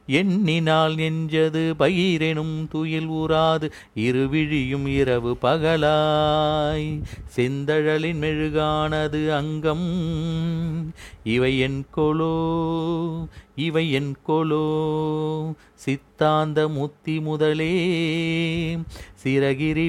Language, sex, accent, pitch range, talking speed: Tamil, male, native, 110-155 Hz, 65 wpm